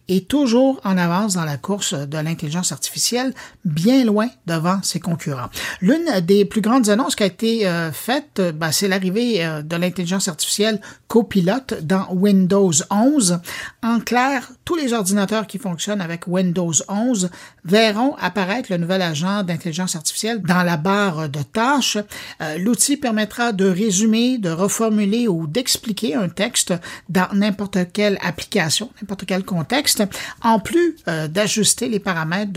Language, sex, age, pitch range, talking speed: French, male, 60-79, 180-230 Hz, 145 wpm